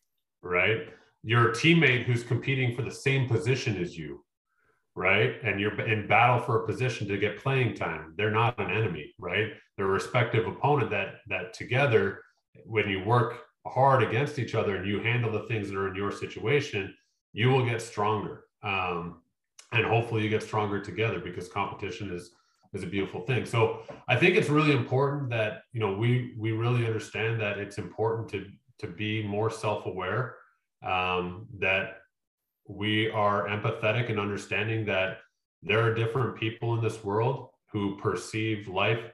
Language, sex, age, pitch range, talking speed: English, male, 30-49, 100-115 Hz, 165 wpm